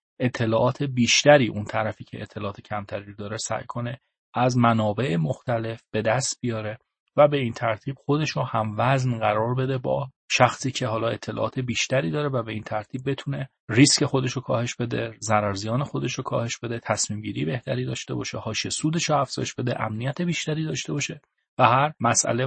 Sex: male